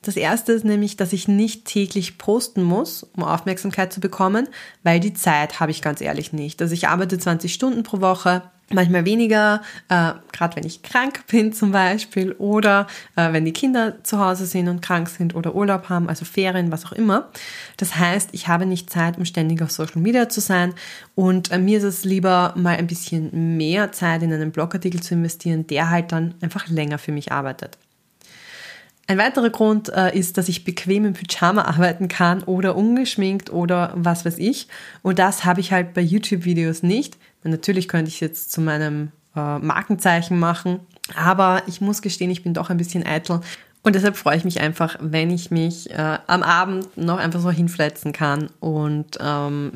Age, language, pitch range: 20-39, German, 165-200 Hz